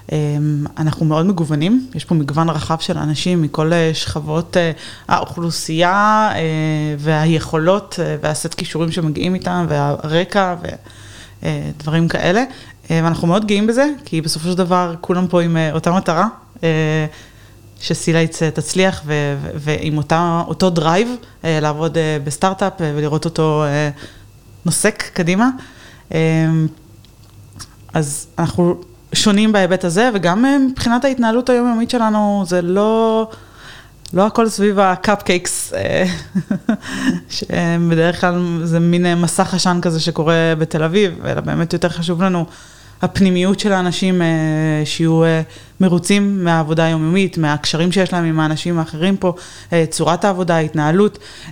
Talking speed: 110 wpm